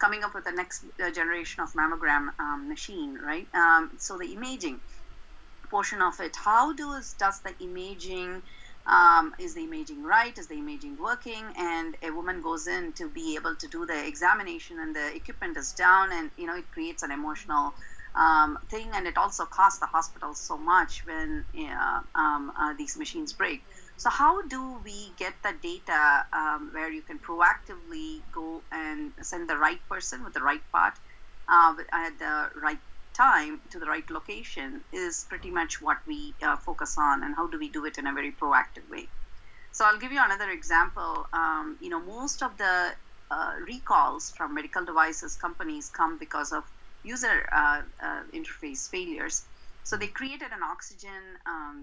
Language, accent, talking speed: English, Indian, 180 wpm